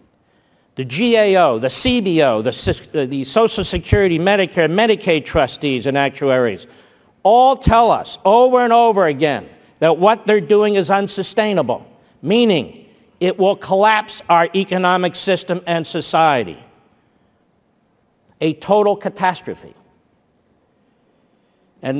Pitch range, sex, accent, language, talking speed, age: 140-195 Hz, male, American, English, 105 wpm, 50-69